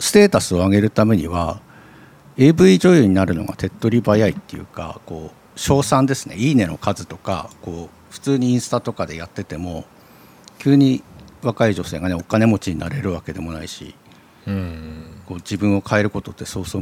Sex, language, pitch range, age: male, Japanese, 90-125 Hz, 50-69